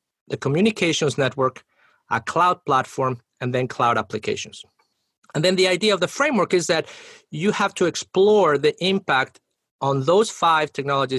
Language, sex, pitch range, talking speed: English, male, 135-180 Hz, 155 wpm